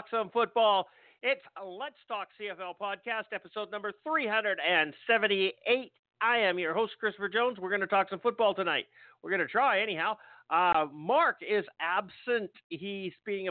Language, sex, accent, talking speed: English, male, American, 155 wpm